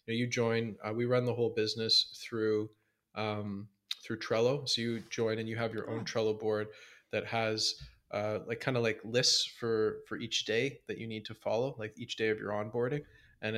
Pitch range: 110-120 Hz